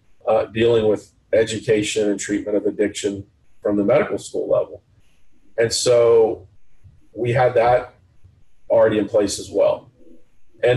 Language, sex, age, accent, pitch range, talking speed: English, male, 40-59, American, 110-140 Hz, 135 wpm